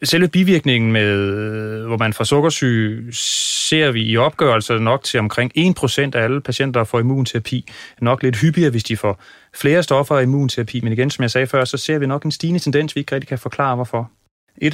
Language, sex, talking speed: Danish, male, 210 wpm